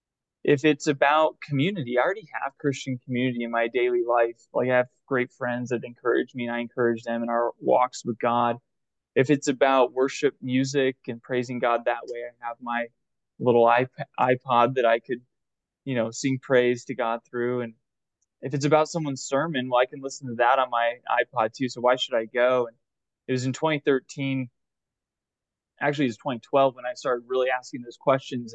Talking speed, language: 195 wpm, English